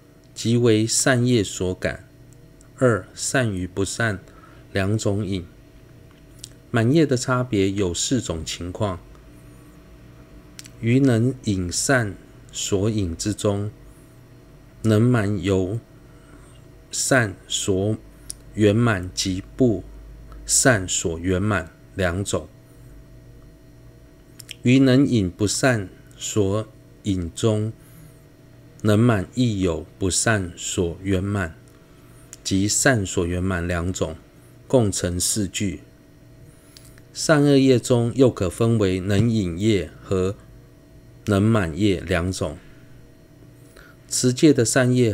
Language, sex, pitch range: Chinese, male, 95-125 Hz